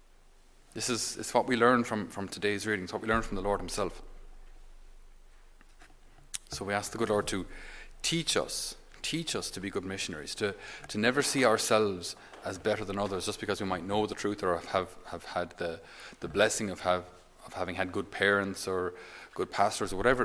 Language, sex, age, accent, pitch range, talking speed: English, male, 30-49, Irish, 90-110 Hz, 200 wpm